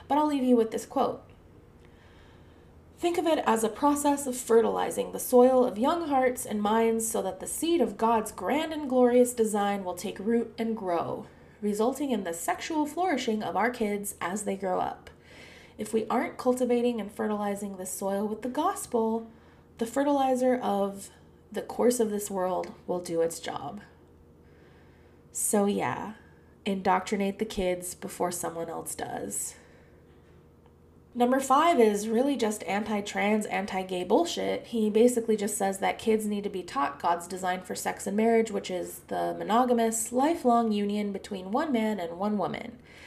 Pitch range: 185-240 Hz